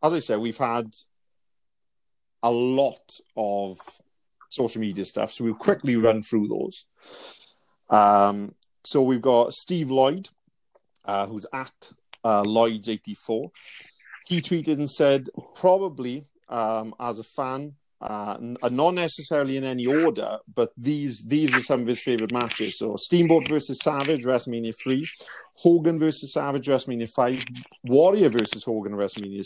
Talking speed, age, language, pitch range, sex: 140 wpm, 40-59, English, 105-135 Hz, male